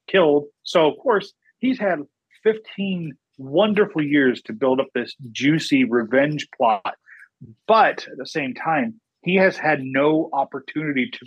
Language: English